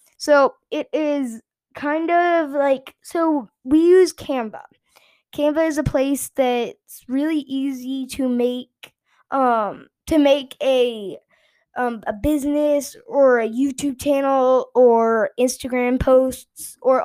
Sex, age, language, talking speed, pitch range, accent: female, 10-29, English, 120 wpm, 245-290 Hz, American